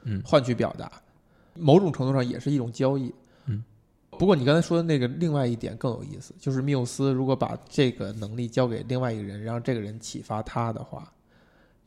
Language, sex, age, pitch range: Chinese, male, 20-39, 115-140 Hz